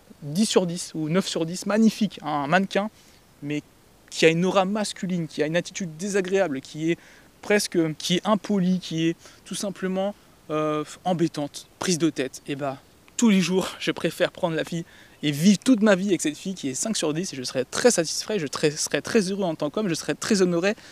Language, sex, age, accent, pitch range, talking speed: French, male, 20-39, French, 150-190 Hz, 220 wpm